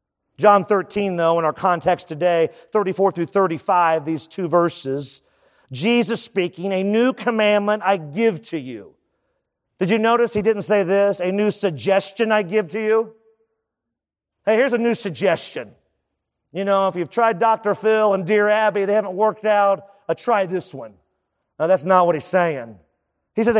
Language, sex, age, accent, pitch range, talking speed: English, male, 40-59, American, 175-220 Hz, 170 wpm